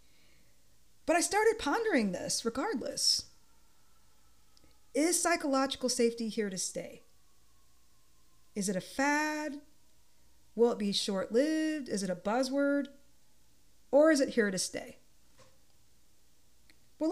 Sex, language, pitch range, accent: female, English, 190-265 Hz, American